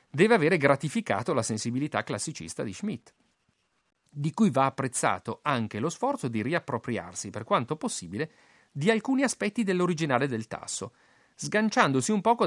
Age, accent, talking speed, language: 40-59, native, 140 wpm, Italian